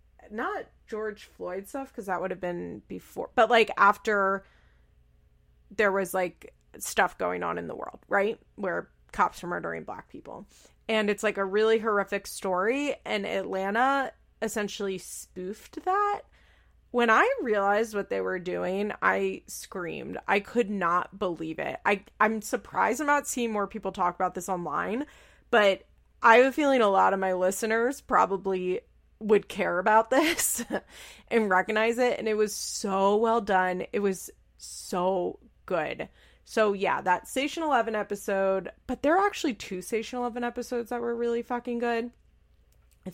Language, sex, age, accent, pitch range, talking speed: English, female, 20-39, American, 185-230 Hz, 160 wpm